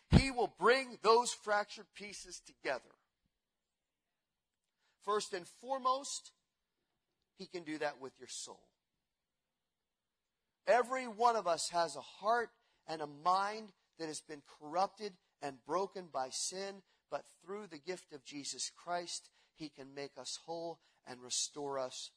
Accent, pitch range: American, 140-190 Hz